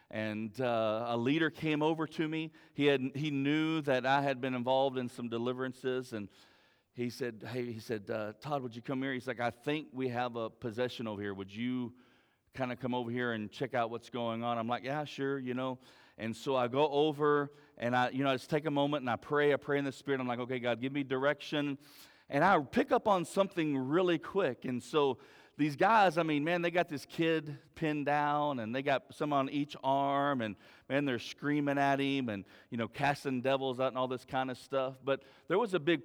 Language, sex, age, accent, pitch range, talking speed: English, male, 40-59, American, 125-160 Hz, 235 wpm